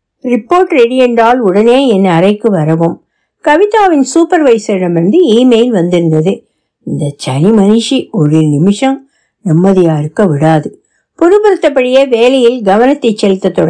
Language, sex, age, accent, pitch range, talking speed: Tamil, female, 60-79, native, 205-310 Hz, 55 wpm